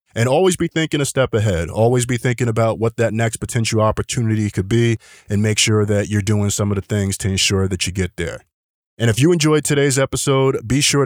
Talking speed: 230 wpm